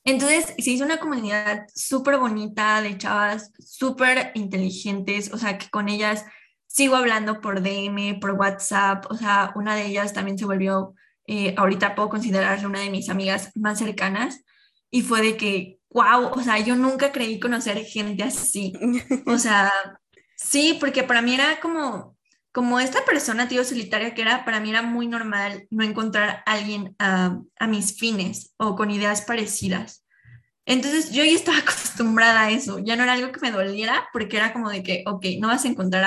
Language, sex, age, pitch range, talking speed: English, female, 20-39, 200-245 Hz, 185 wpm